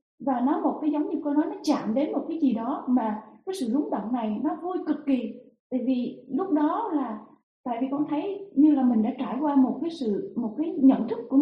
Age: 20-39